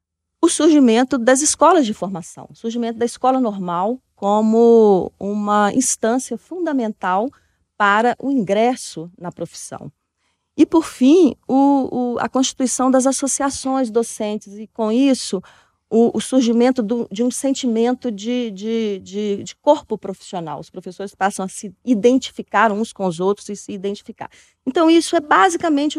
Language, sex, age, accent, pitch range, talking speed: Portuguese, female, 40-59, Brazilian, 190-260 Hz, 140 wpm